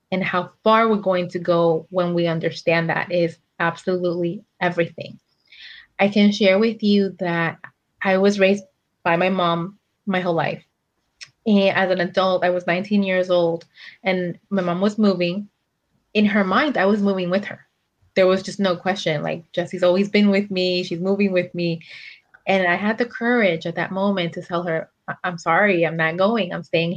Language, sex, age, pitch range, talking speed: English, female, 20-39, 170-195 Hz, 185 wpm